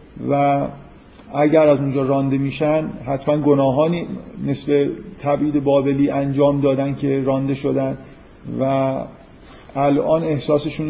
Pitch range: 125-145 Hz